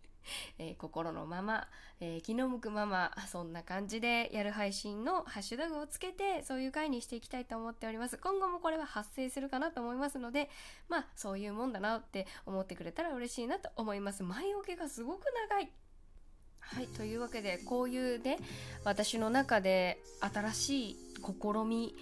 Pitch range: 200-275 Hz